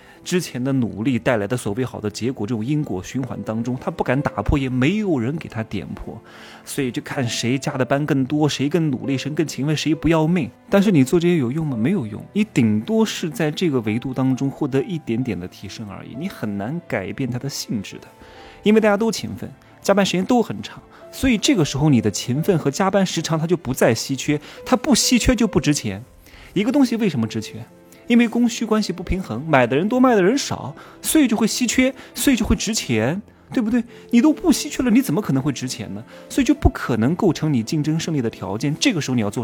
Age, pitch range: 20-39, 120-200 Hz